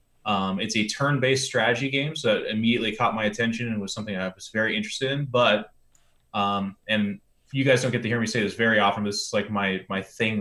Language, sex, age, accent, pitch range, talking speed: English, male, 20-39, American, 105-130 Hz, 230 wpm